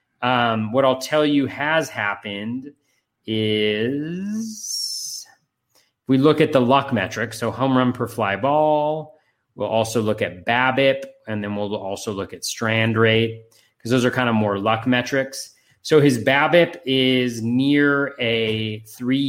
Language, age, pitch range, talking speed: English, 30-49, 115-145 Hz, 150 wpm